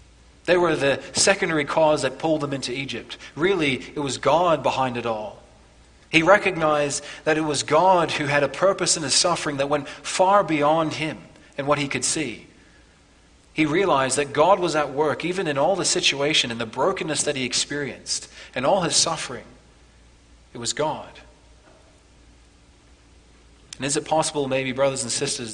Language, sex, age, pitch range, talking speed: English, male, 30-49, 110-150 Hz, 170 wpm